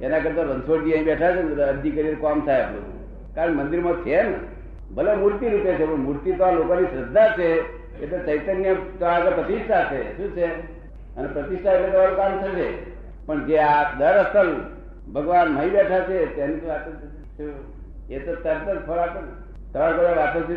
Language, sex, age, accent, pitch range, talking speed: Gujarati, male, 60-79, native, 150-185 Hz, 40 wpm